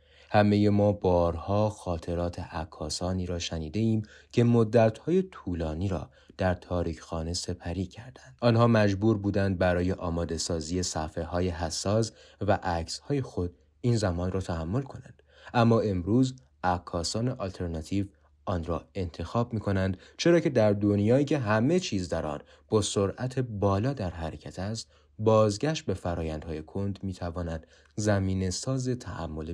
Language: Persian